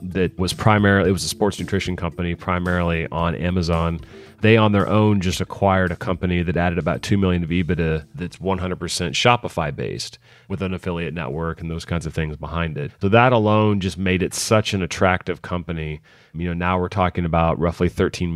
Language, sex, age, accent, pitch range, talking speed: English, male, 30-49, American, 85-100 Hz, 195 wpm